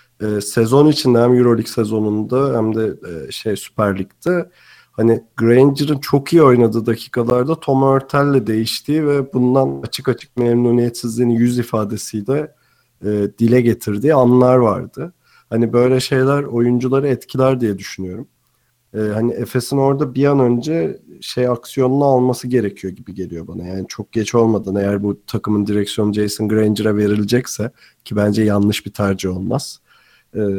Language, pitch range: Turkish, 110-130 Hz